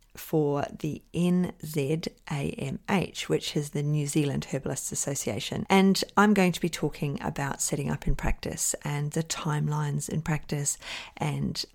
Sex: female